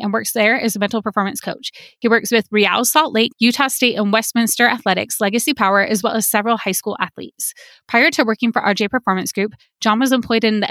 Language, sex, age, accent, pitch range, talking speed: English, female, 20-39, American, 200-240 Hz, 225 wpm